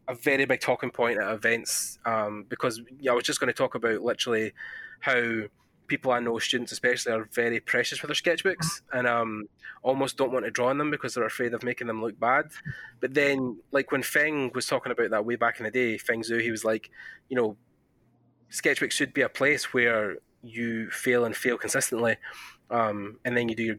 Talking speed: 215 wpm